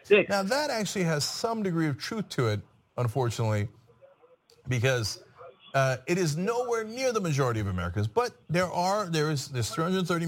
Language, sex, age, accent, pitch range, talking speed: English, male, 40-59, American, 130-200 Hz, 170 wpm